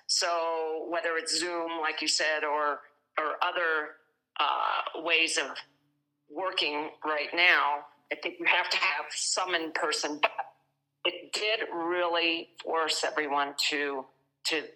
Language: English